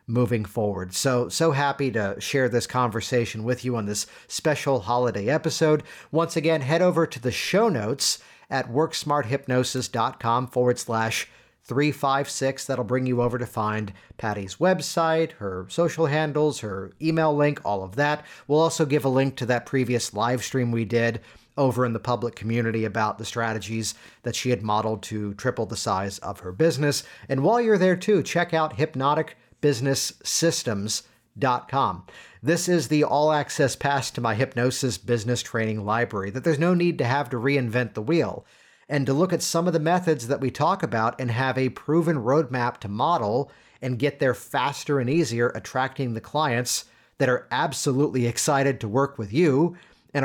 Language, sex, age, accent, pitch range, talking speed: English, male, 50-69, American, 115-150 Hz, 175 wpm